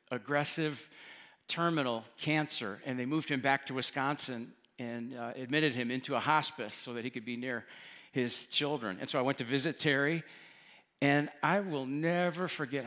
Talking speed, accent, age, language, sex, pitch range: 175 wpm, American, 50-69, English, male, 130-170 Hz